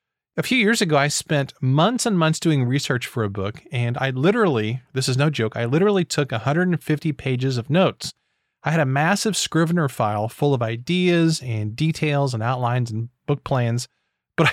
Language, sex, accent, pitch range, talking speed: English, male, American, 125-170 Hz, 185 wpm